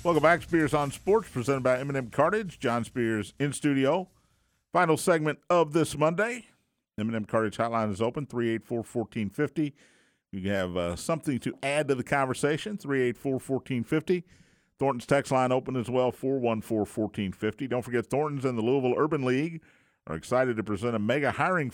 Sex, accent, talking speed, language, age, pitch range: male, American, 165 wpm, English, 50-69, 115-145 Hz